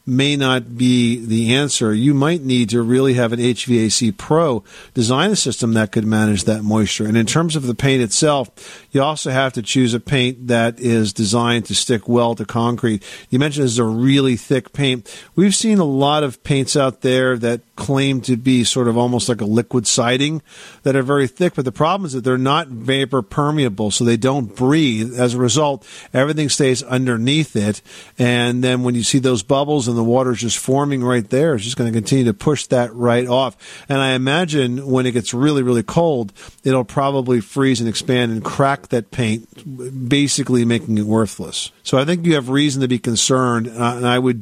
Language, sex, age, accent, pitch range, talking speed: English, male, 50-69, American, 120-140 Hz, 210 wpm